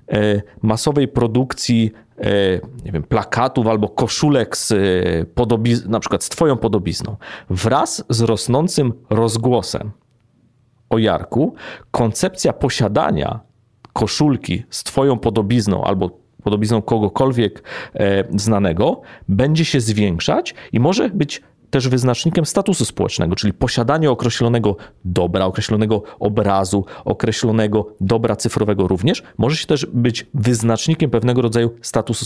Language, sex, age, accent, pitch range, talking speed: Polish, male, 40-59, native, 105-135 Hz, 110 wpm